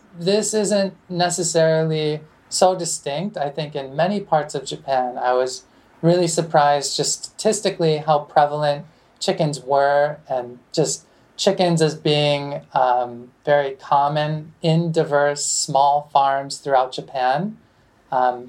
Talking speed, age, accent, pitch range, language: 120 wpm, 30-49, American, 140-170 Hz, English